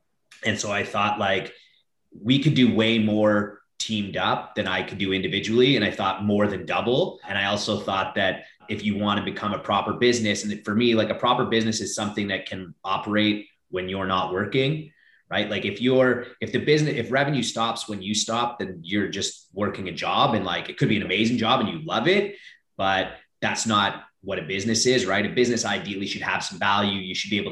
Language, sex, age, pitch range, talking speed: English, male, 30-49, 100-115 Hz, 220 wpm